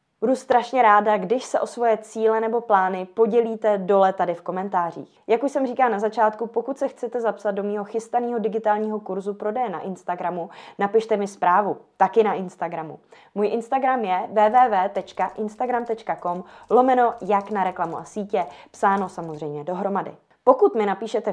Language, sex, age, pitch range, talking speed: Czech, female, 20-39, 190-235 Hz, 155 wpm